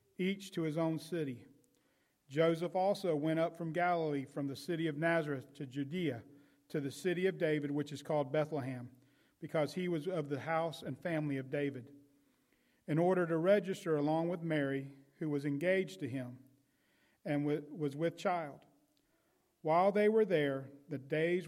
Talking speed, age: 165 wpm, 40-59